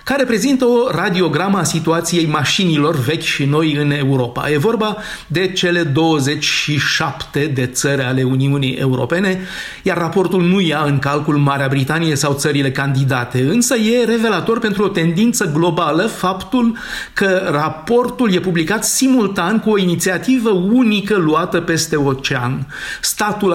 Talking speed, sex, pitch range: 140 wpm, male, 145-200 Hz